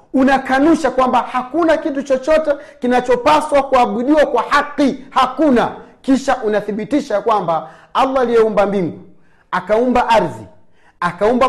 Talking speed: 100 wpm